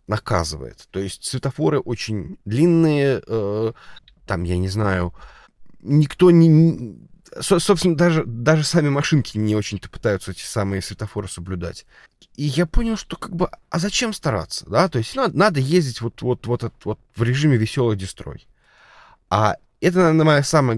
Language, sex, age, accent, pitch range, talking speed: Russian, male, 20-39, native, 105-145 Hz, 155 wpm